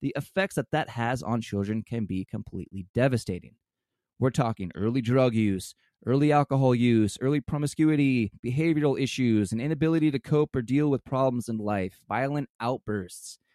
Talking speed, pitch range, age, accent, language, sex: 155 wpm, 105-145 Hz, 20-39, American, English, male